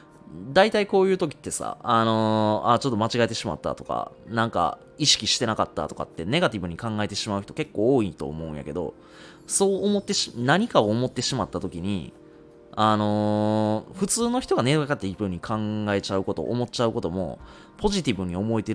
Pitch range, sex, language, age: 95-130 Hz, male, Japanese, 20-39